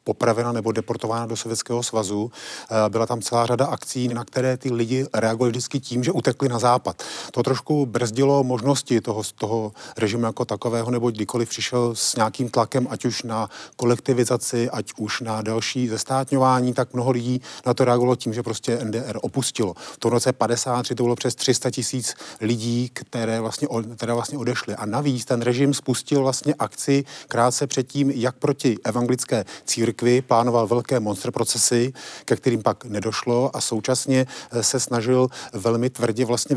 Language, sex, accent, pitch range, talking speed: Czech, male, native, 115-130 Hz, 165 wpm